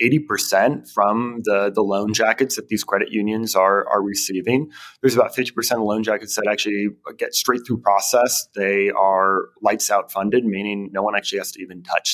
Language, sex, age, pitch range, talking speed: English, male, 30-49, 100-120 Hz, 185 wpm